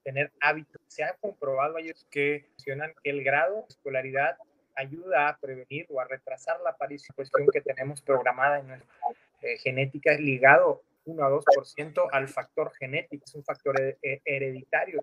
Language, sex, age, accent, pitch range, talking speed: Spanish, male, 30-49, Mexican, 135-165 Hz, 160 wpm